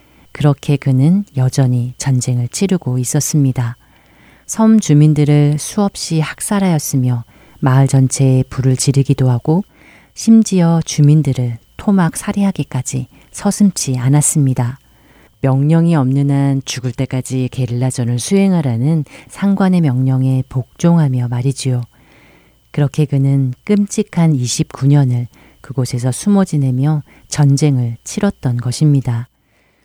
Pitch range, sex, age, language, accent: 130-155 Hz, female, 40-59, Korean, native